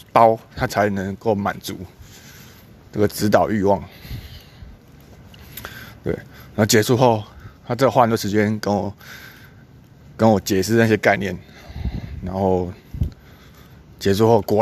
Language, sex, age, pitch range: Chinese, male, 20-39, 105-140 Hz